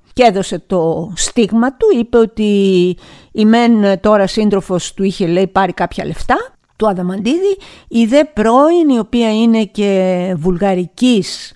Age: 50-69